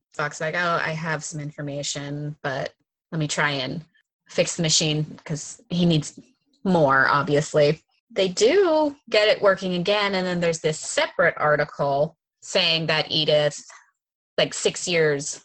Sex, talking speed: female, 145 wpm